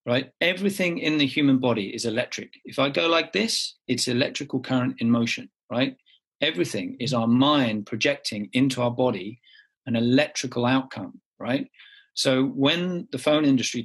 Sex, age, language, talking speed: male, 40-59, English, 155 wpm